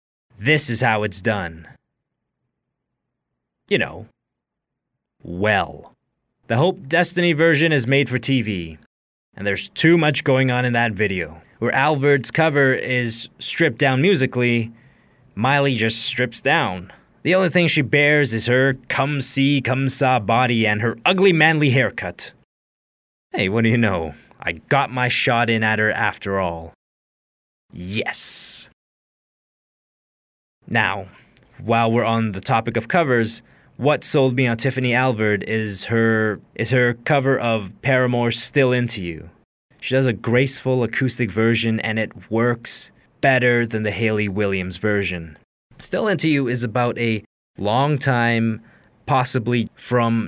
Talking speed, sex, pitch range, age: 140 wpm, male, 110-135 Hz, 20-39